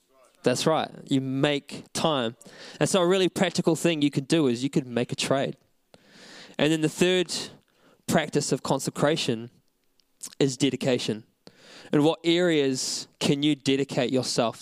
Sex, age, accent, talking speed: male, 20-39, Australian, 150 wpm